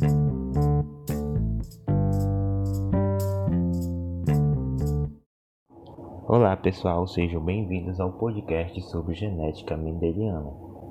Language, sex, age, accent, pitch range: Portuguese, male, 20-39, Brazilian, 85-110 Hz